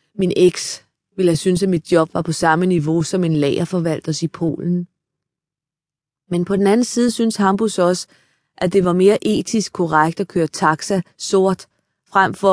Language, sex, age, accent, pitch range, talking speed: Danish, female, 20-39, native, 155-200 Hz, 175 wpm